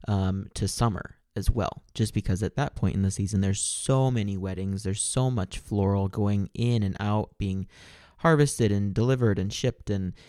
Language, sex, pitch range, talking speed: English, male, 100-120 Hz, 185 wpm